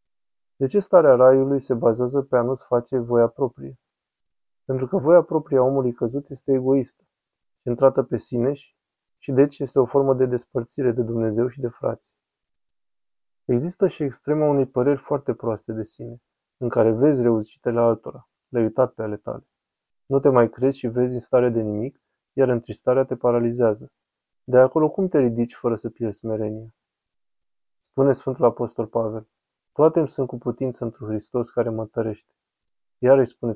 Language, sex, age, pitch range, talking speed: Romanian, male, 20-39, 115-135 Hz, 170 wpm